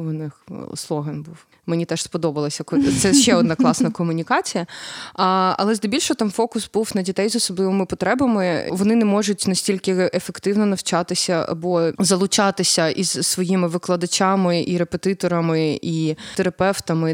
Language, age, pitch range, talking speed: Ukrainian, 20-39, 170-205 Hz, 135 wpm